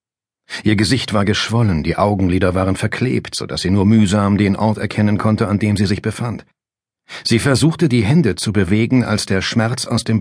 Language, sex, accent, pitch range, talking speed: German, male, German, 95-120 Hz, 195 wpm